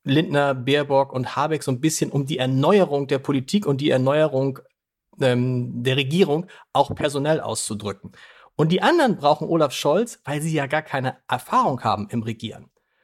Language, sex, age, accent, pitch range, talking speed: German, male, 40-59, German, 140-190 Hz, 165 wpm